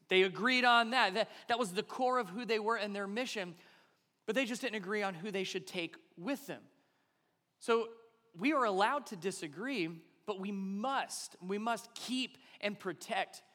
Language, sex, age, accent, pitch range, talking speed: English, male, 30-49, American, 165-215 Hz, 185 wpm